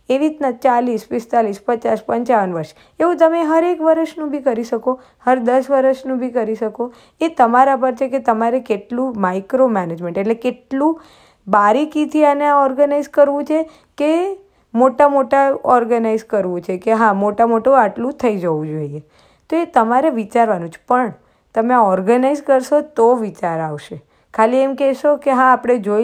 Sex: female